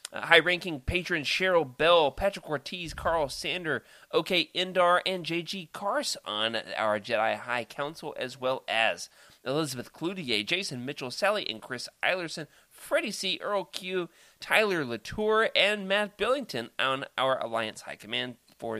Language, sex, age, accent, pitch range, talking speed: English, male, 30-49, American, 120-195 Hz, 145 wpm